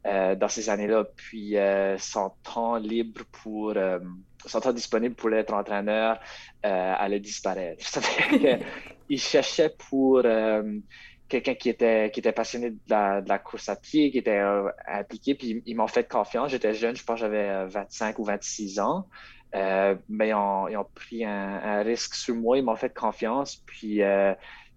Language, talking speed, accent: French, 180 wpm, Canadian